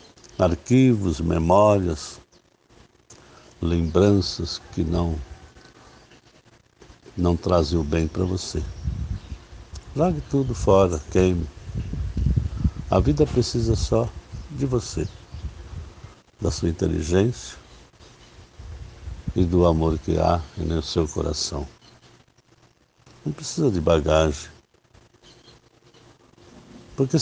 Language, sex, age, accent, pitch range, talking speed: Portuguese, male, 60-79, Brazilian, 80-100 Hz, 80 wpm